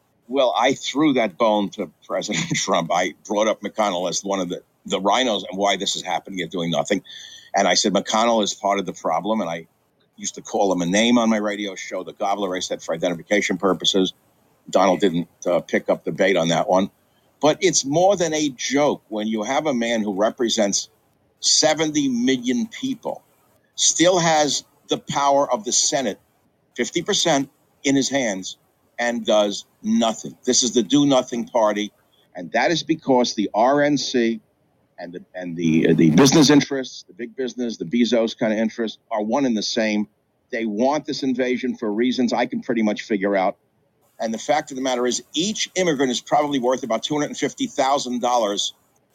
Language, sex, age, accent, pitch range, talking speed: English, male, 50-69, American, 105-145 Hz, 185 wpm